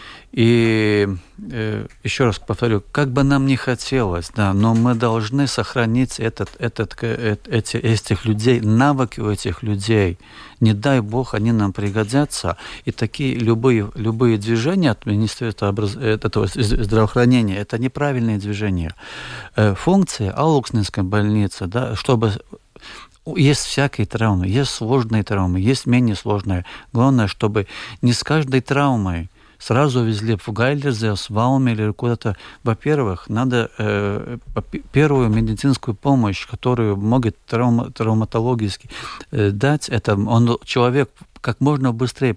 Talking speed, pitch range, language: 130 wpm, 105-130 Hz, Russian